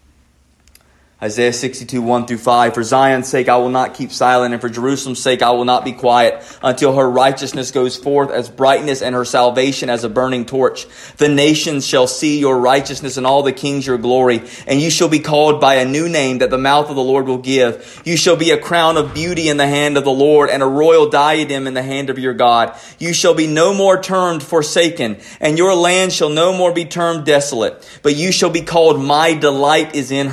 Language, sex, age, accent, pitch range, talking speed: English, male, 30-49, American, 115-155 Hz, 225 wpm